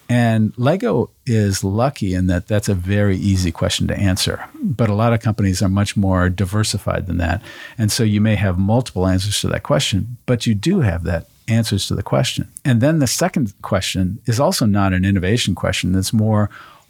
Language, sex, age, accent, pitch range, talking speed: English, male, 50-69, American, 95-120 Hz, 200 wpm